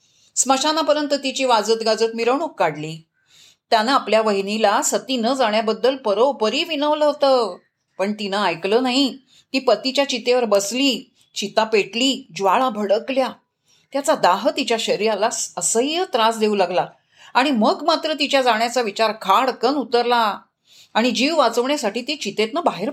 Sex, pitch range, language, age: female, 220-280 Hz, Marathi, 30-49